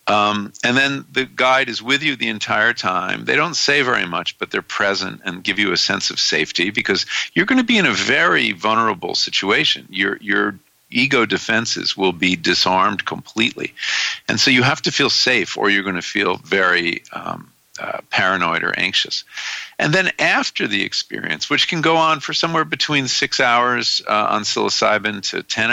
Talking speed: 190 wpm